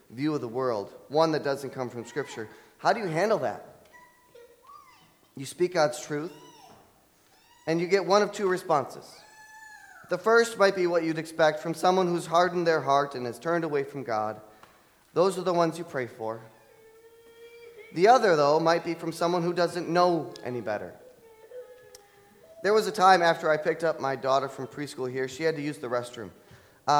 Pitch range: 135-180 Hz